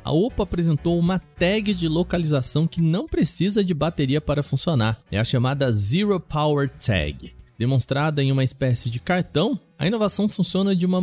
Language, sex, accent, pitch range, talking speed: Portuguese, male, Brazilian, 110-160 Hz, 170 wpm